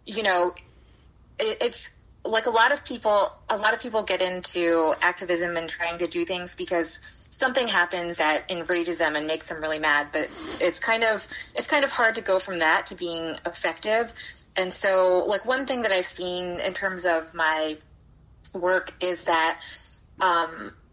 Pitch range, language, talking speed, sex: 170-210 Hz, English, 180 wpm, female